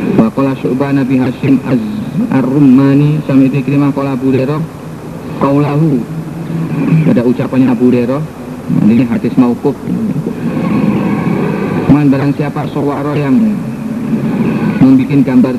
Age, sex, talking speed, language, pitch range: 50-69, male, 95 wpm, Indonesian, 135-205 Hz